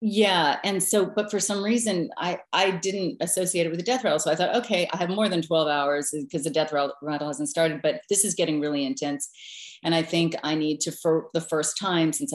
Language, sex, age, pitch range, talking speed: English, female, 30-49, 155-190 Hz, 240 wpm